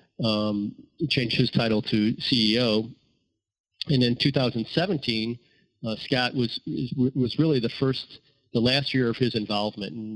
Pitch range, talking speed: 115-135 Hz, 135 wpm